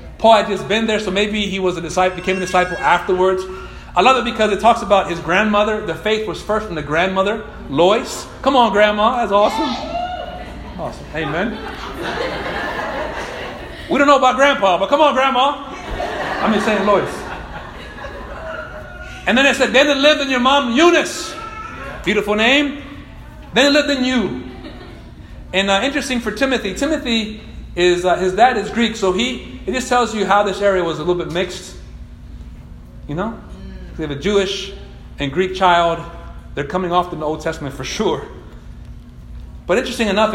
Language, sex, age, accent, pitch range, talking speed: English, male, 40-59, American, 170-225 Hz, 175 wpm